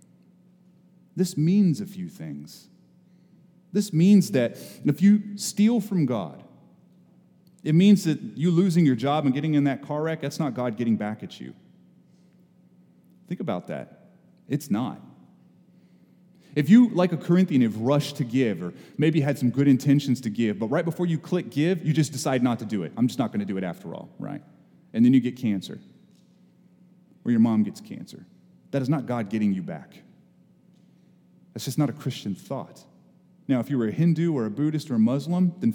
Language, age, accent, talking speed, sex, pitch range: English, 30-49, American, 190 wpm, male, 115-180 Hz